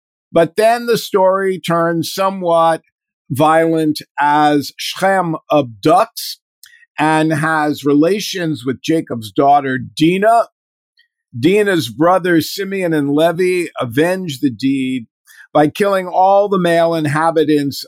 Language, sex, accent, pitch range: English, male, American, 145-185 Hz